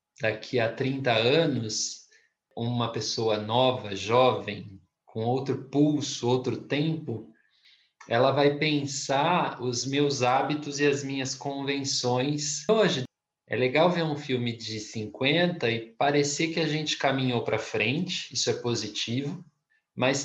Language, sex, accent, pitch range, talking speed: Portuguese, male, Brazilian, 115-145 Hz, 125 wpm